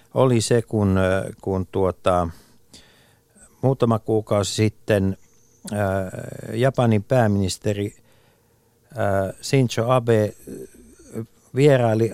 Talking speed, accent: 65 wpm, native